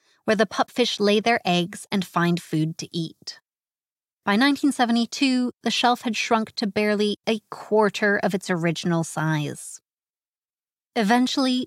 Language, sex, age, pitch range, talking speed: English, female, 30-49, 175-235 Hz, 135 wpm